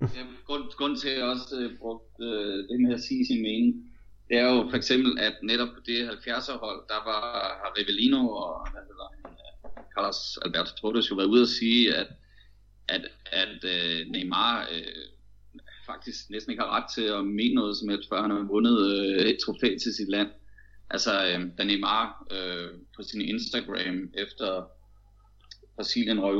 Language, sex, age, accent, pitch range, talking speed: Danish, male, 30-49, native, 100-120 Hz, 175 wpm